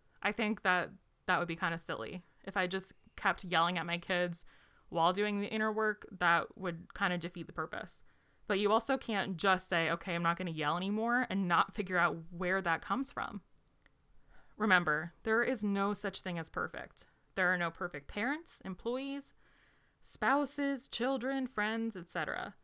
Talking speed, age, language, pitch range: 180 wpm, 20-39, English, 180-225 Hz